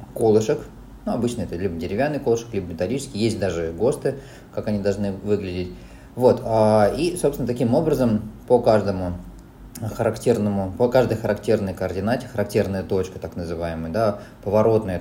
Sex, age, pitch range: male, 20-39, 95-120 Hz